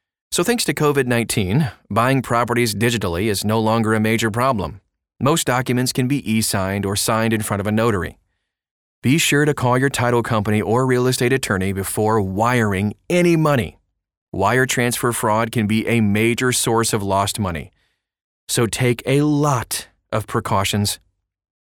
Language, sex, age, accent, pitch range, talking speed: English, male, 30-49, American, 100-130 Hz, 160 wpm